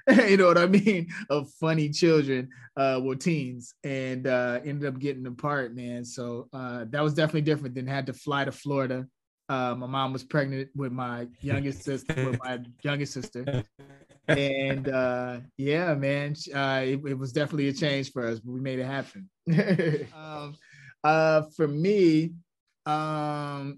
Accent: American